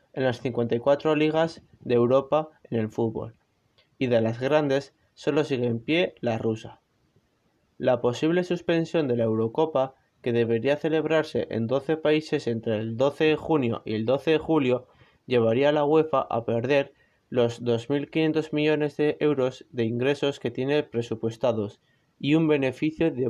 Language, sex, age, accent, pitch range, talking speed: Spanish, male, 20-39, Spanish, 115-140 Hz, 155 wpm